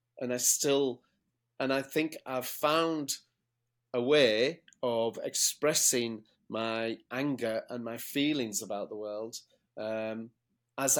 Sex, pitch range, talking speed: male, 115-140 Hz, 120 wpm